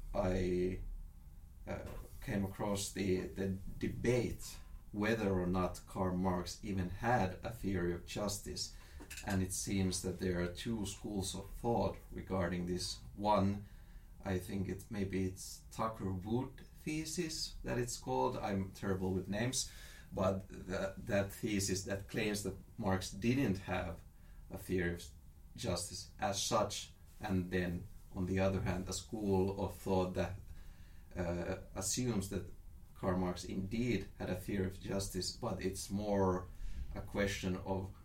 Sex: male